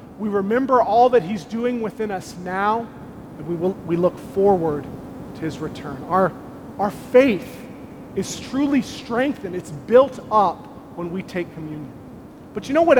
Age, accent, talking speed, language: 30-49, American, 160 wpm, English